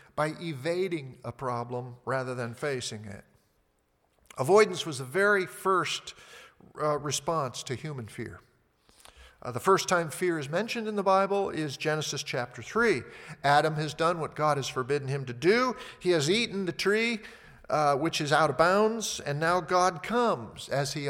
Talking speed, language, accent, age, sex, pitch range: 170 wpm, English, American, 50-69, male, 120-175 Hz